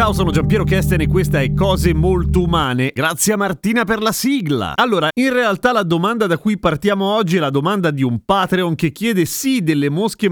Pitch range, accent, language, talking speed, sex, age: 135-190 Hz, native, Italian, 210 wpm, male, 30-49